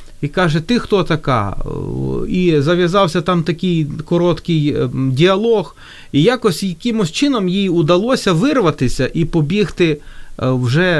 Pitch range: 135-175 Hz